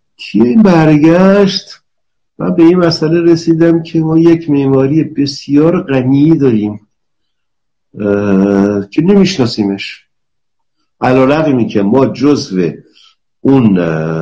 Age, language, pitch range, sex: 50-69, Persian, 90-145 Hz, male